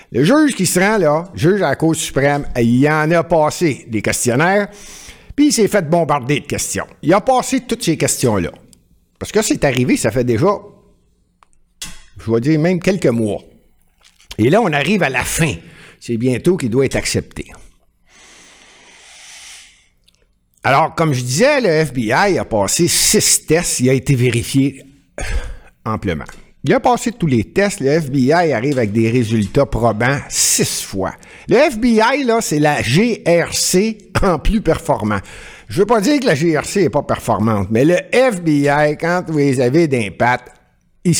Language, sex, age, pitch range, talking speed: French, male, 60-79, 120-185 Hz, 170 wpm